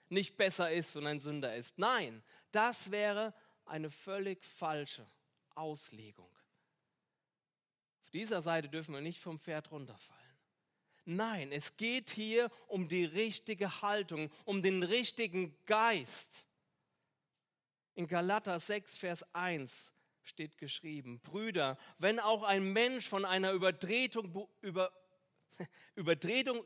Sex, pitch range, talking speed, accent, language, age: male, 165-220 Hz, 115 wpm, German, German, 40-59